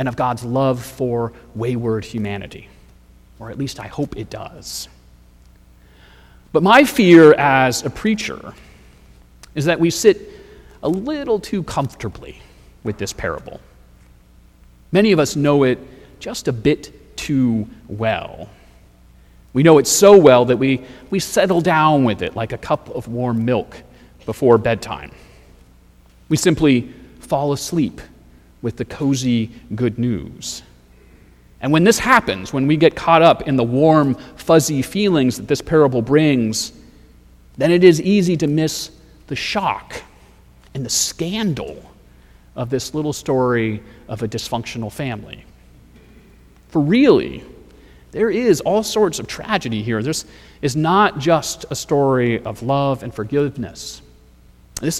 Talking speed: 140 wpm